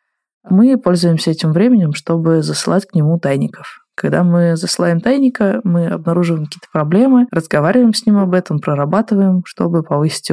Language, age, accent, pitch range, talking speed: Russian, 20-39, native, 145-175 Hz, 145 wpm